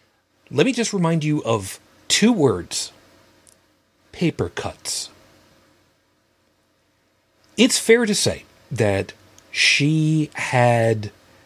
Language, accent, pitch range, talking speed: English, American, 100-125 Hz, 90 wpm